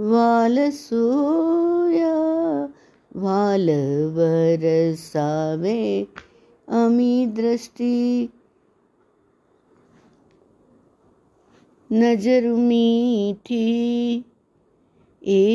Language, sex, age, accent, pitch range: Hindi, female, 60-79, native, 160-240 Hz